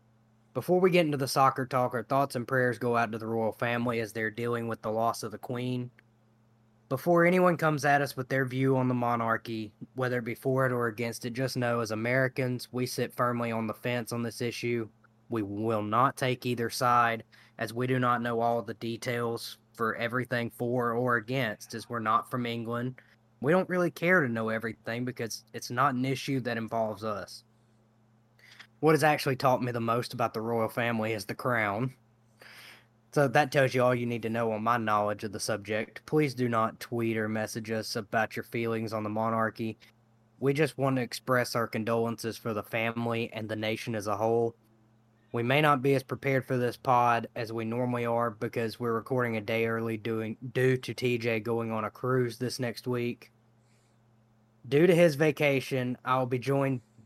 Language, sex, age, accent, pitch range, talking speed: English, male, 20-39, American, 115-125 Hz, 200 wpm